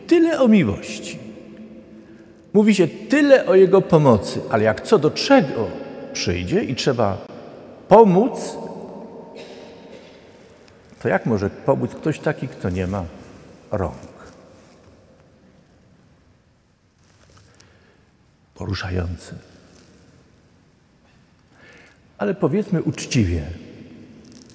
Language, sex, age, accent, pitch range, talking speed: Polish, male, 50-69, native, 125-190 Hz, 80 wpm